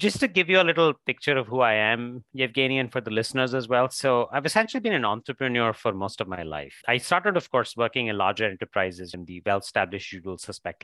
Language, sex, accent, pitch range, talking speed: English, male, Indian, 100-135 Hz, 240 wpm